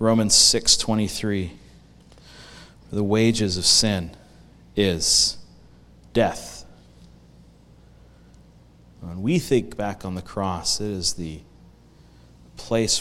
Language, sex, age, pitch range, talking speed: English, male, 40-59, 80-110 Hz, 90 wpm